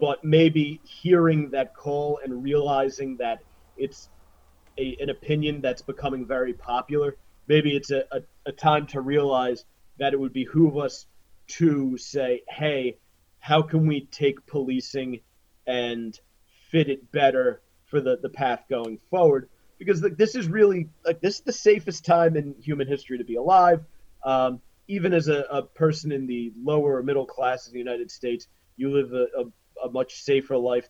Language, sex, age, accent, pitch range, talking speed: English, male, 30-49, American, 125-150 Hz, 170 wpm